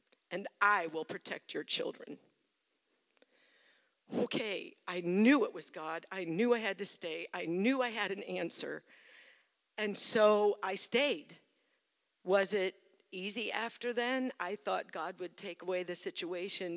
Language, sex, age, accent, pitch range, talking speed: English, female, 50-69, American, 170-205 Hz, 145 wpm